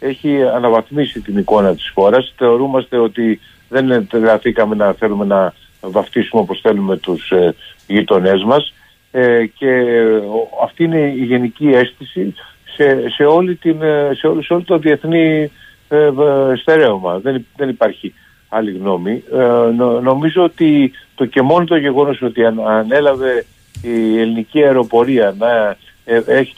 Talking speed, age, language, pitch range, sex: 135 wpm, 60-79, Greek, 115-145 Hz, male